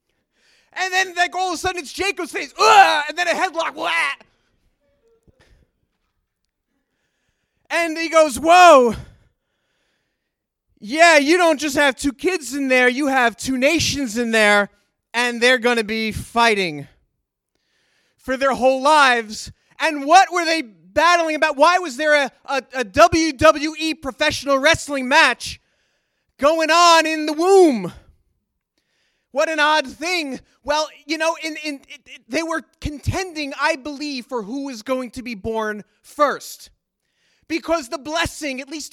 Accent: American